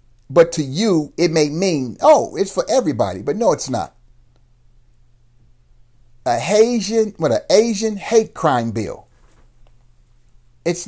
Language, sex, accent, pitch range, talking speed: English, male, American, 120-180 Hz, 125 wpm